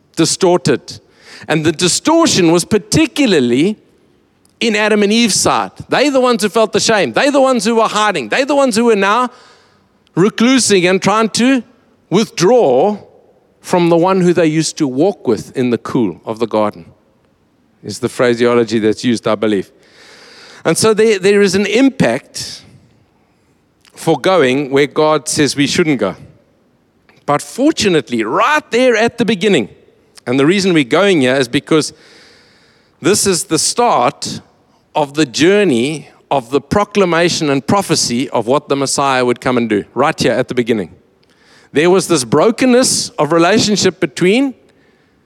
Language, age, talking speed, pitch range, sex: English, 50-69, 160 wpm, 155-220 Hz, male